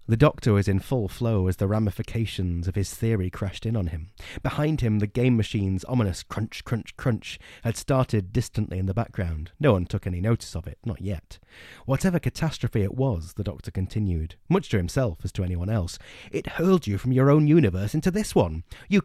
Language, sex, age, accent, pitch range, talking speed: English, male, 30-49, British, 95-135 Hz, 205 wpm